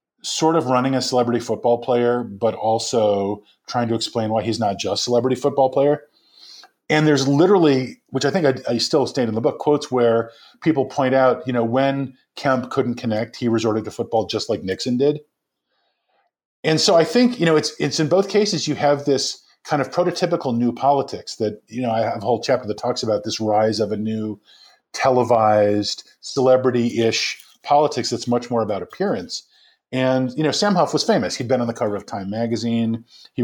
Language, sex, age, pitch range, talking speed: English, male, 40-59, 110-140 Hz, 195 wpm